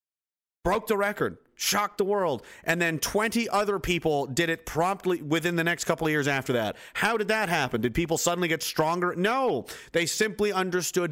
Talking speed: 190 wpm